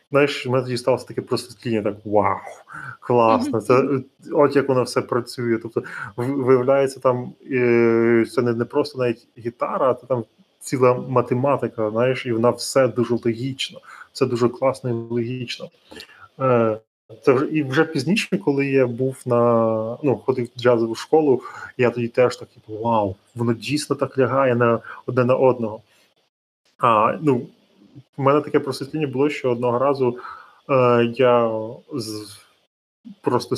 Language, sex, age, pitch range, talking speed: Ukrainian, male, 20-39, 110-130 Hz, 135 wpm